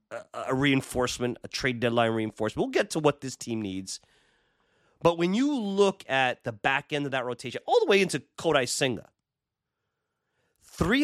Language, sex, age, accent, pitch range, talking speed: English, male, 30-49, American, 120-165 Hz, 170 wpm